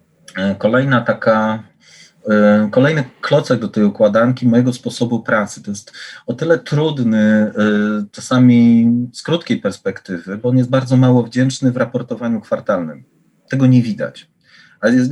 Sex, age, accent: male, 30-49, native